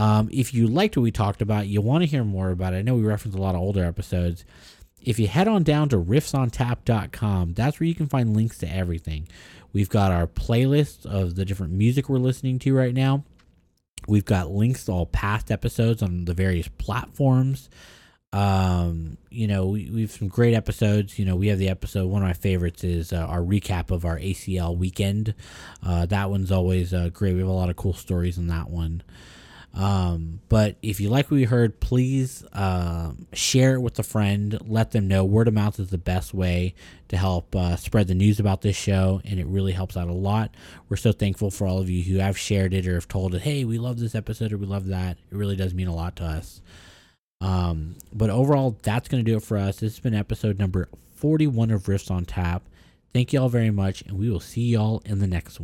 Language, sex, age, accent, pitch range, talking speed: English, male, 30-49, American, 90-110 Hz, 230 wpm